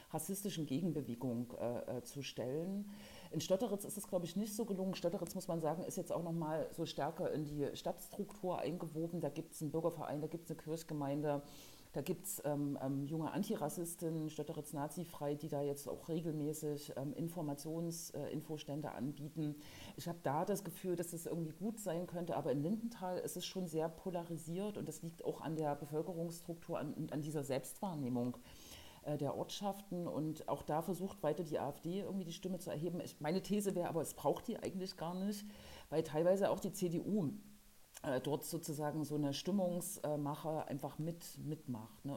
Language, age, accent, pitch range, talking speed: German, 40-59, German, 150-180 Hz, 180 wpm